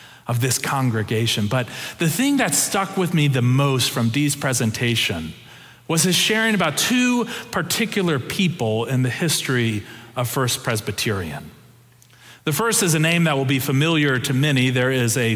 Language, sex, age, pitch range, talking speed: English, male, 40-59, 125-155 Hz, 165 wpm